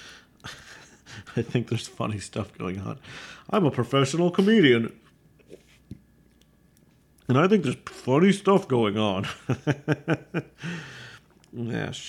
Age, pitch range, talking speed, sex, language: 40-59, 110-145 Hz, 100 wpm, male, English